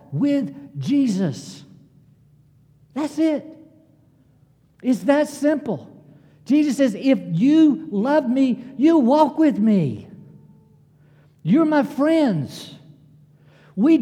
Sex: male